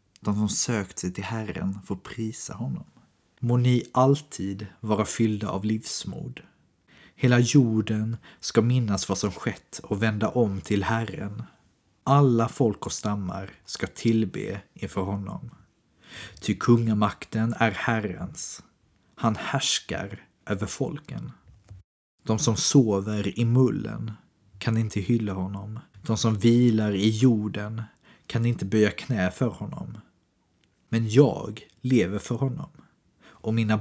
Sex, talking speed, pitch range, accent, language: male, 125 wpm, 100-115 Hz, native, Swedish